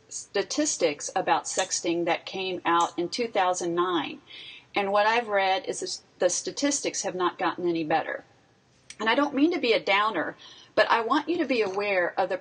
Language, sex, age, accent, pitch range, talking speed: English, female, 40-59, American, 175-245 Hz, 180 wpm